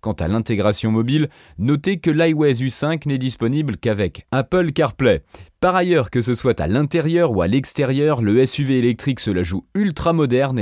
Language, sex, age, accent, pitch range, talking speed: French, male, 30-49, French, 115-170 Hz, 175 wpm